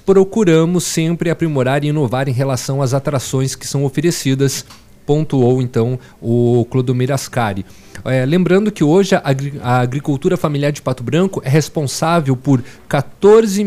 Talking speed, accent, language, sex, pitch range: 135 wpm, Brazilian, Portuguese, male, 120-155 Hz